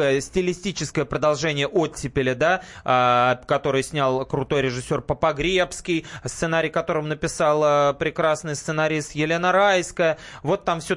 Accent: native